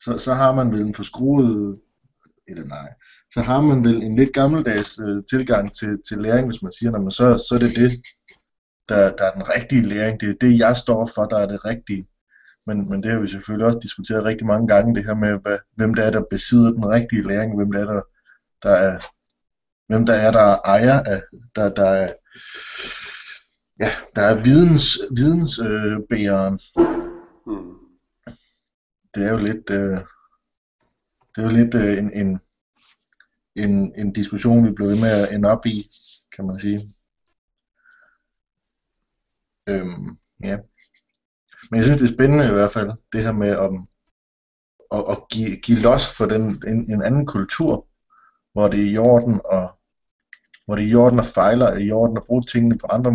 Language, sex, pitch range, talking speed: Danish, male, 100-120 Hz, 175 wpm